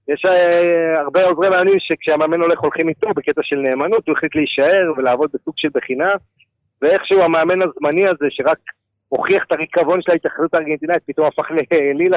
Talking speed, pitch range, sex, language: 165 wpm, 135-175 Hz, male, Hebrew